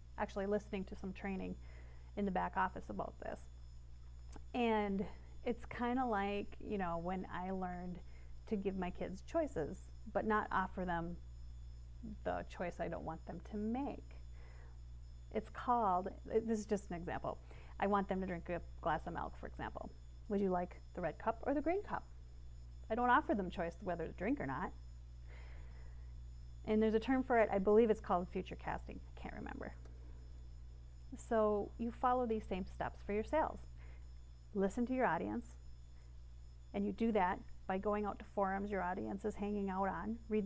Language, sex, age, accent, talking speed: English, female, 30-49, American, 180 wpm